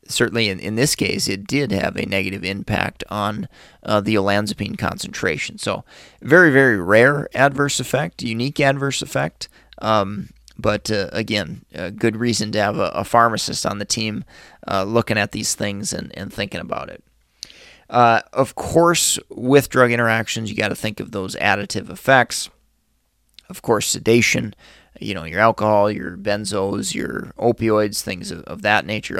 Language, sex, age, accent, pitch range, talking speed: English, male, 30-49, American, 105-125 Hz, 165 wpm